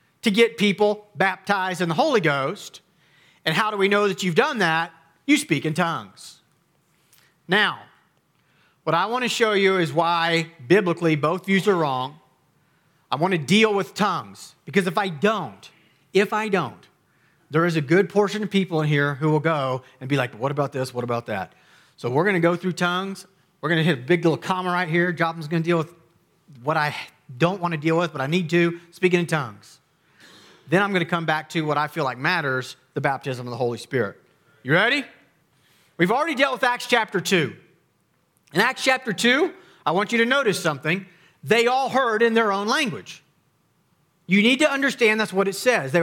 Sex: male